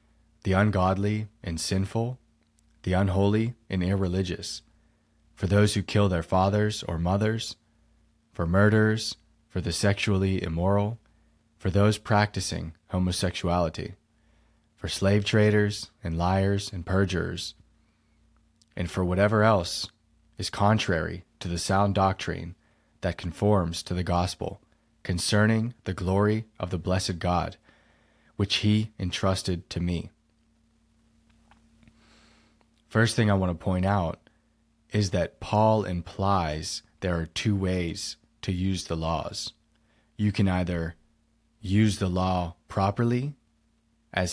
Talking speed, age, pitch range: 120 wpm, 30-49, 90-110 Hz